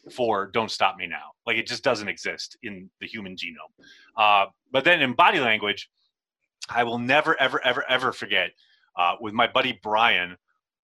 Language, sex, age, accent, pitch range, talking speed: English, male, 30-49, American, 105-135 Hz, 175 wpm